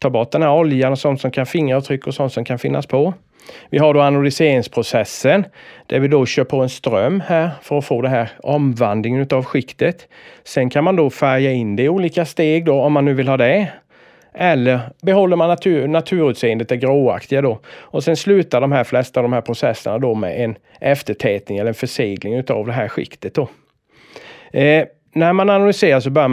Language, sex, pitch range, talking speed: Swedish, male, 125-155 Hz, 205 wpm